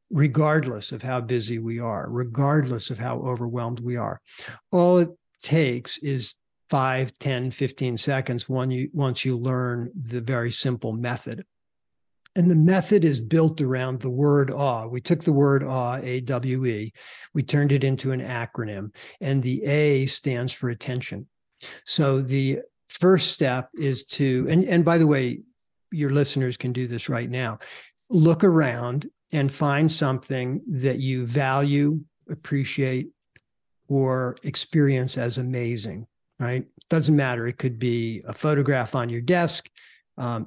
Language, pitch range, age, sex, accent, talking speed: English, 125-145 Hz, 60-79, male, American, 145 wpm